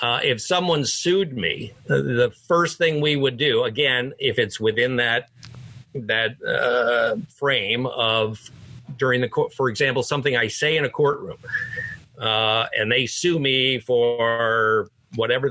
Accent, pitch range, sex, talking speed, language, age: American, 120-165 Hz, male, 150 wpm, English, 50-69